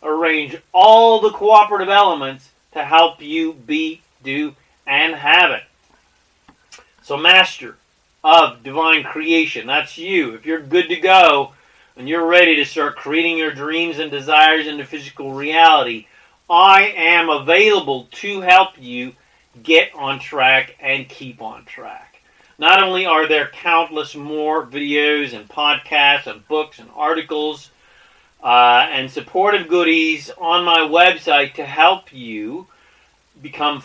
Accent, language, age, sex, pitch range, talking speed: American, English, 40-59, male, 145-180 Hz, 135 wpm